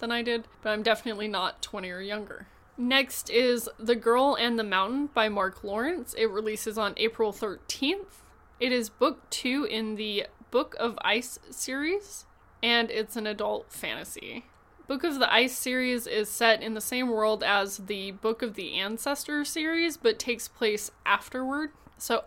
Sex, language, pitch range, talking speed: female, English, 210-250 Hz, 170 wpm